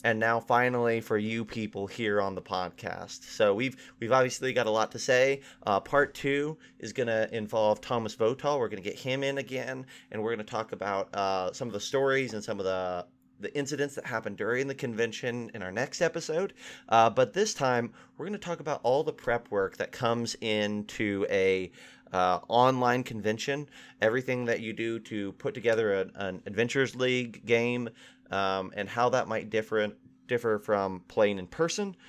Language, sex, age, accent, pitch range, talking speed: English, male, 30-49, American, 105-130 Hz, 195 wpm